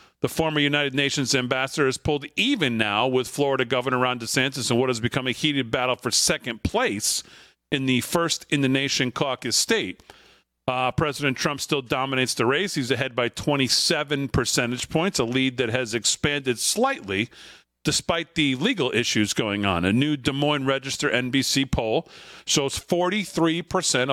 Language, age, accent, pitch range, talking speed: English, 40-59, American, 125-150 Hz, 165 wpm